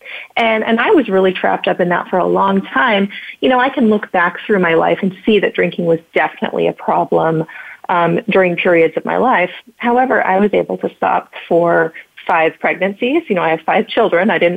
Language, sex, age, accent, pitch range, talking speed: English, female, 30-49, American, 170-230 Hz, 220 wpm